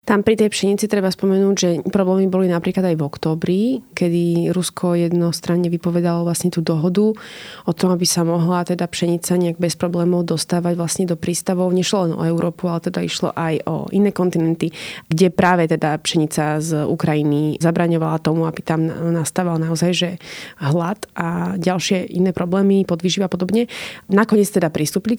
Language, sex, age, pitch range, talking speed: Slovak, female, 20-39, 165-190 Hz, 160 wpm